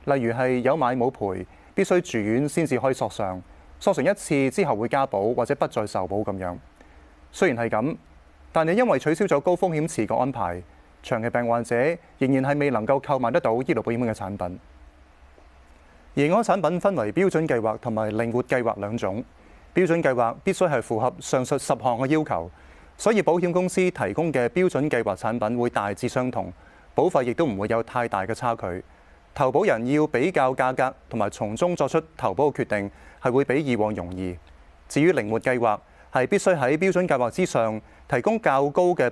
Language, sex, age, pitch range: Chinese, male, 30-49, 105-155 Hz